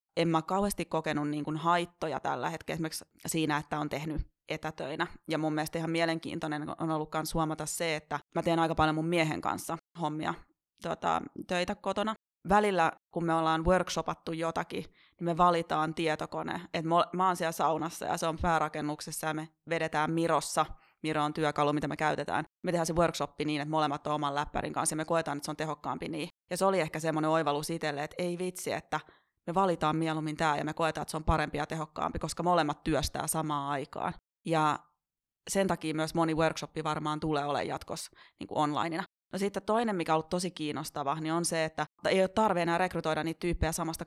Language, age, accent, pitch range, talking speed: Finnish, 30-49, native, 155-170 Hz, 195 wpm